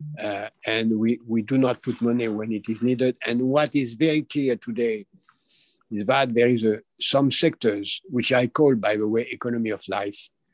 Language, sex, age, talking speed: English, male, 50-69, 190 wpm